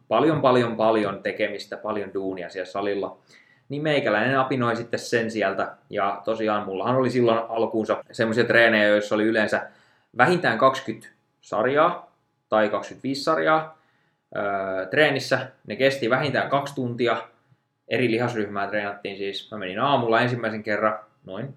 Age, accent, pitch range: 20-39, native, 105-135 Hz